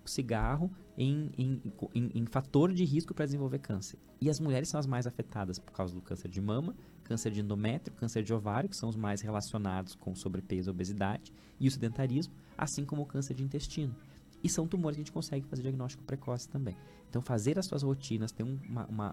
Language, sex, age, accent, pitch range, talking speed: Portuguese, male, 20-39, Brazilian, 100-135 Hz, 210 wpm